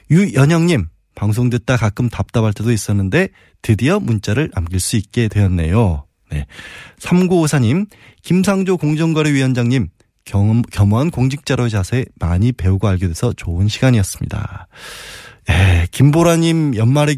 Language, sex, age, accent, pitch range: Korean, male, 20-39, native, 105-150 Hz